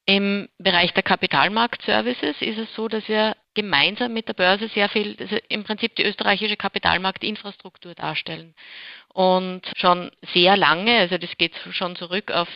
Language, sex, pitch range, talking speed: German, female, 170-200 Hz, 150 wpm